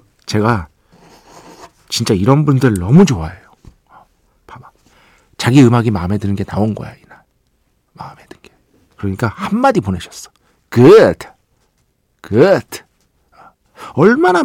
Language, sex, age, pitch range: Korean, male, 40-59, 105-150 Hz